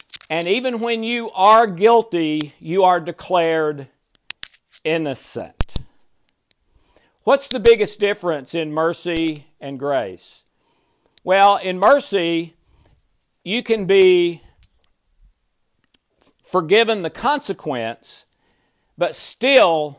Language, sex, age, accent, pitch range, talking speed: English, male, 50-69, American, 150-195 Hz, 85 wpm